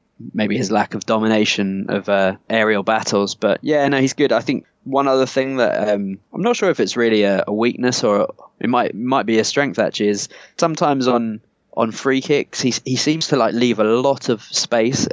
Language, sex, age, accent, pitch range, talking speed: English, male, 20-39, British, 105-125 Hz, 220 wpm